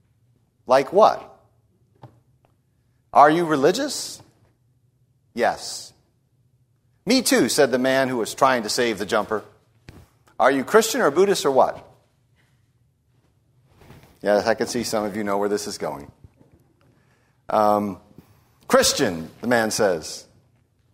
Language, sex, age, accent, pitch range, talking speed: English, male, 50-69, American, 120-165 Hz, 120 wpm